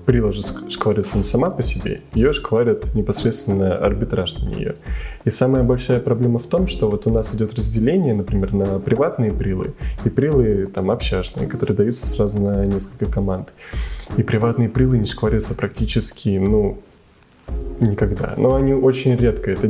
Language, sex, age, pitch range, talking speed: Russian, male, 20-39, 100-120 Hz, 155 wpm